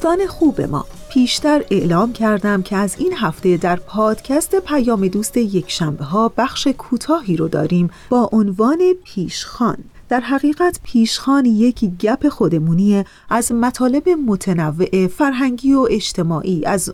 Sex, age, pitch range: female, 30-49, 180-250 Hz